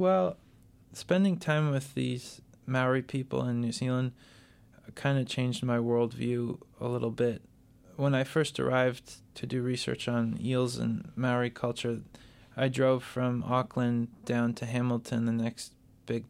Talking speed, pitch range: 145 wpm, 115-130 Hz